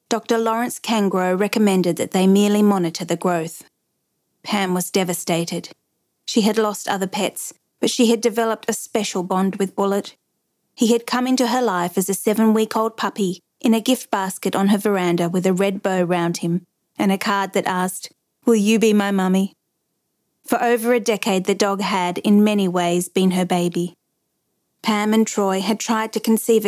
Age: 30-49